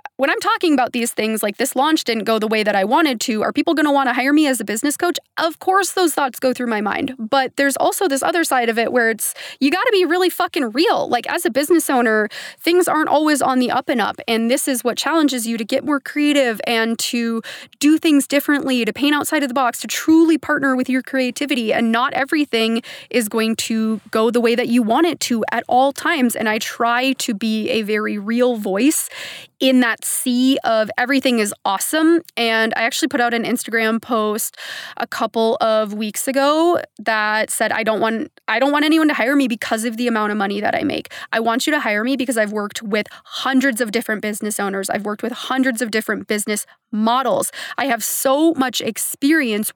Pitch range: 225-295 Hz